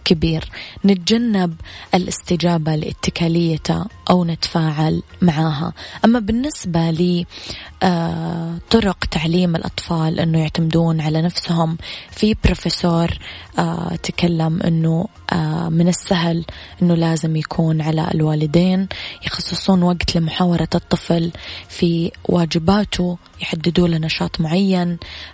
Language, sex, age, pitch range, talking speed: Arabic, female, 20-39, 160-180 Hz, 85 wpm